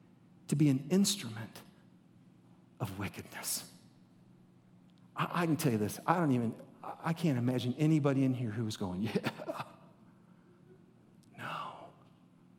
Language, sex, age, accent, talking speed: English, male, 50-69, American, 130 wpm